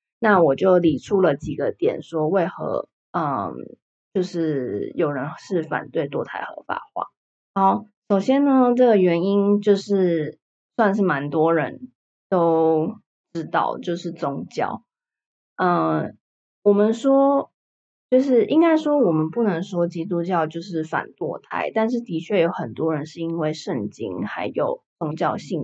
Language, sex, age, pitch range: Chinese, female, 20-39, 165-210 Hz